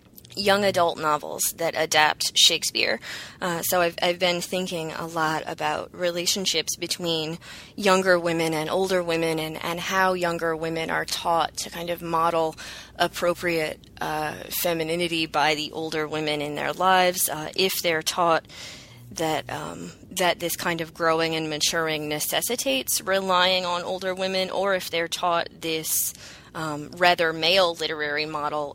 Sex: female